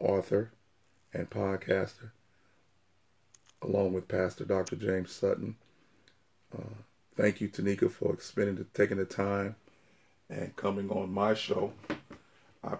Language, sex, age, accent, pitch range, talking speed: English, male, 40-59, American, 95-110 Hz, 110 wpm